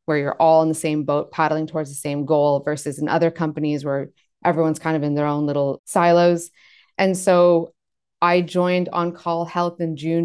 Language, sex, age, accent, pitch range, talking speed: English, female, 20-39, American, 150-175 Hz, 200 wpm